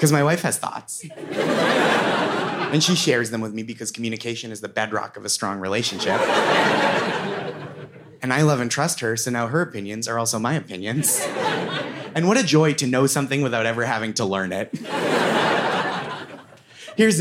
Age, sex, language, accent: 30-49, male, English, American